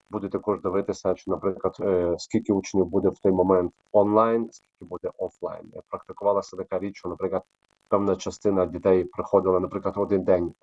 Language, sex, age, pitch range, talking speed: Ukrainian, male, 30-49, 90-100 Hz, 150 wpm